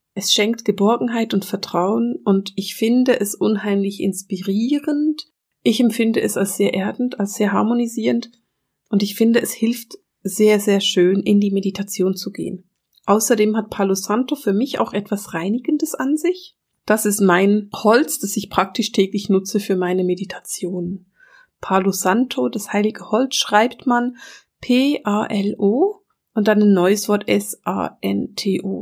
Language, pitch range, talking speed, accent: German, 195-240 Hz, 145 wpm, German